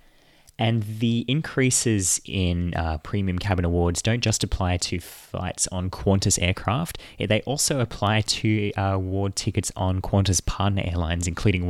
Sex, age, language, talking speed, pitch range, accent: male, 20-39, English, 145 wpm, 90-105 Hz, Australian